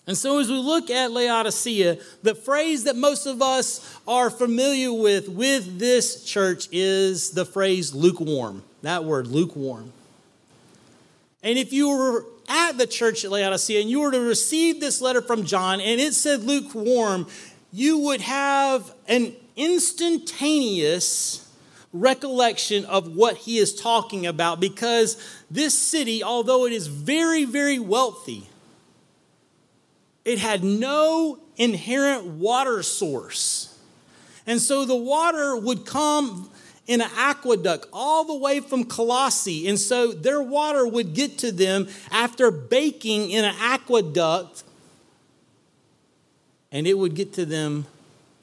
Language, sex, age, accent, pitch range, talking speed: English, male, 40-59, American, 185-270 Hz, 135 wpm